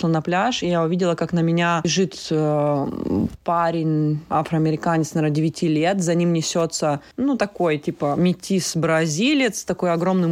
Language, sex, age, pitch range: Russian, female, 20-39, 170-210 Hz